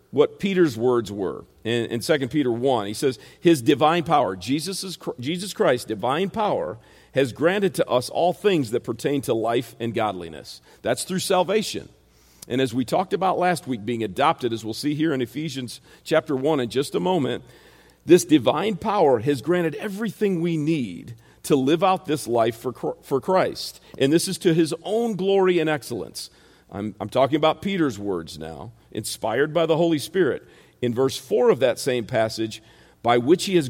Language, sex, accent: English, male, American